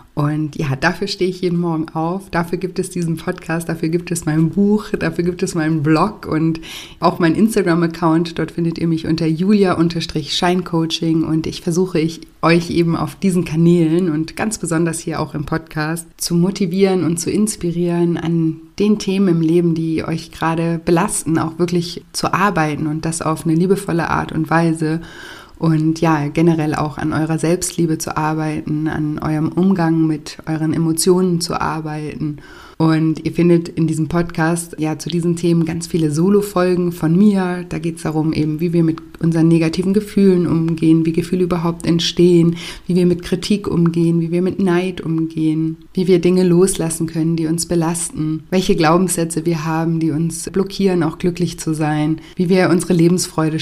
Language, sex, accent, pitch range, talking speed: German, female, German, 160-180 Hz, 175 wpm